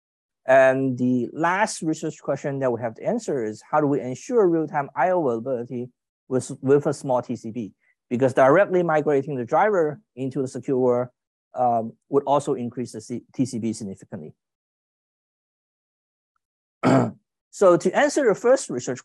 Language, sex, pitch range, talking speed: English, male, 125-175 Hz, 140 wpm